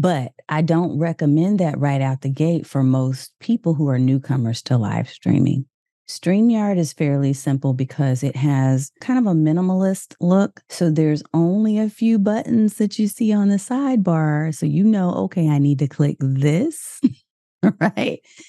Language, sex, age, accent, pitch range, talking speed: English, female, 30-49, American, 135-180 Hz, 170 wpm